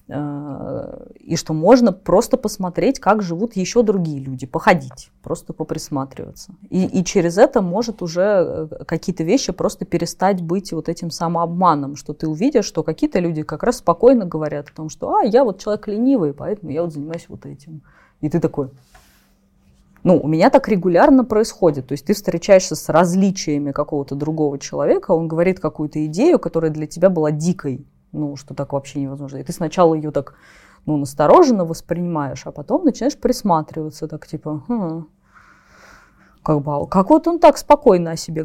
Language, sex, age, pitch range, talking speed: Russian, female, 20-39, 155-215 Hz, 165 wpm